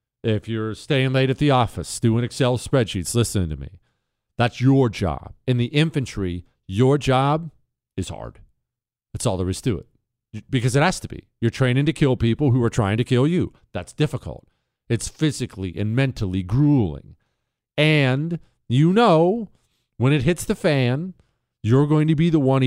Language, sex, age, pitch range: English, male, 40-59, 110-155 Hz